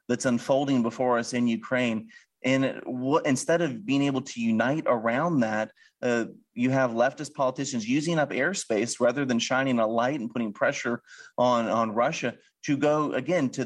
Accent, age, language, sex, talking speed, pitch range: American, 30-49, English, male, 170 wpm, 115-140 Hz